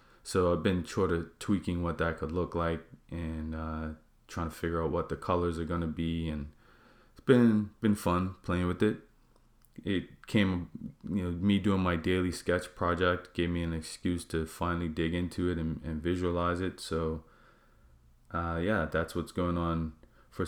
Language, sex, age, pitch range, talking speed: English, male, 20-39, 80-95 Hz, 185 wpm